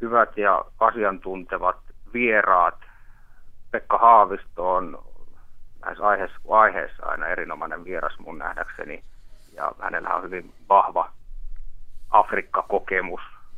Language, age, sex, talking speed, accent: Finnish, 30-49, male, 90 wpm, native